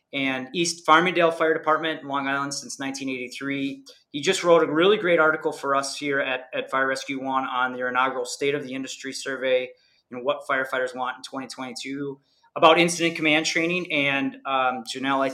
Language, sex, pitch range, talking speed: English, male, 140-170 Hz, 180 wpm